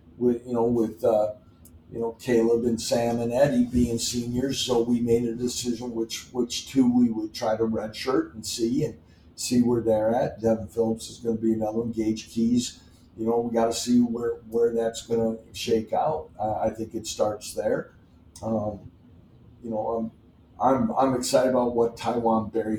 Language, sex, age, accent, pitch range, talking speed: English, male, 50-69, American, 105-115 Hz, 195 wpm